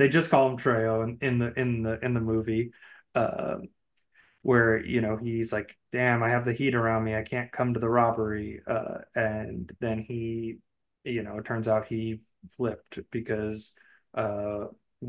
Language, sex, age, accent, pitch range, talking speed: English, male, 20-39, American, 110-120 Hz, 185 wpm